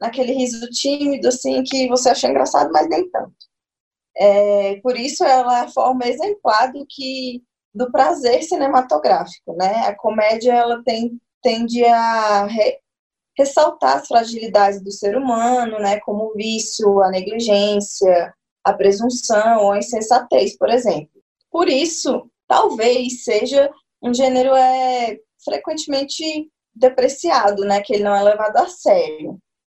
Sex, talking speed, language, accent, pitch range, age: female, 135 wpm, Portuguese, Brazilian, 220-275 Hz, 10-29